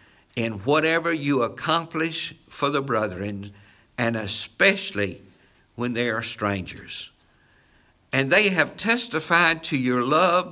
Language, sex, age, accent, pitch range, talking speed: English, male, 60-79, American, 105-170 Hz, 115 wpm